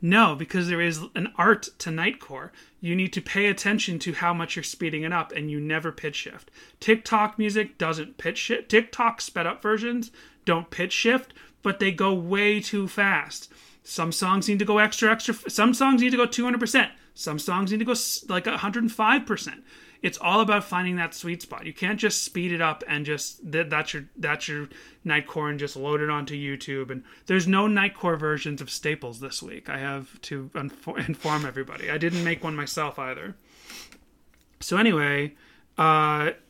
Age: 30-49